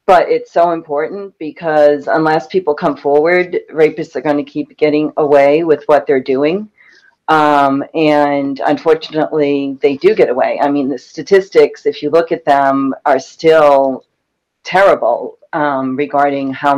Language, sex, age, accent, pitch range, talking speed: English, female, 40-59, American, 140-160 Hz, 150 wpm